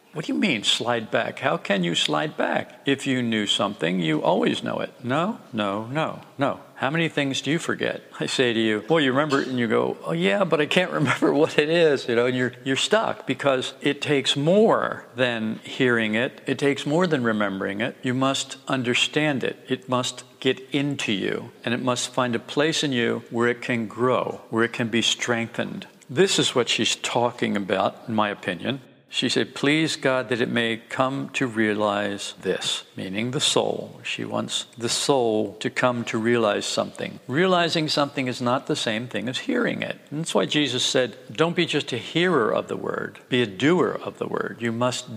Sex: male